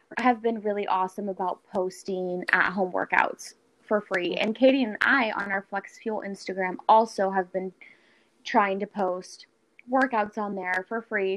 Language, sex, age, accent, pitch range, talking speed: English, female, 20-39, American, 195-255 Hz, 165 wpm